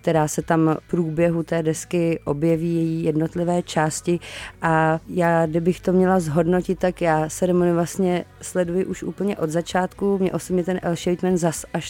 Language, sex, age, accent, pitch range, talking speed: Czech, female, 30-49, native, 165-180 Hz, 165 wpm